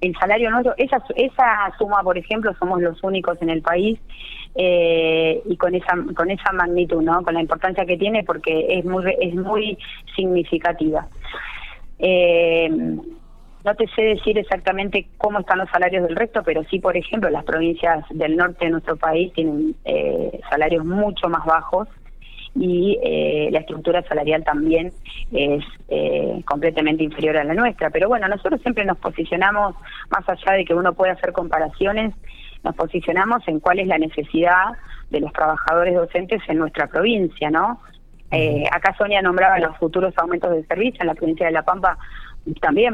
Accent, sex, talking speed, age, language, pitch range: Argentinian, female, 170 wpm, 20-39, Spanish, 165-200 Hz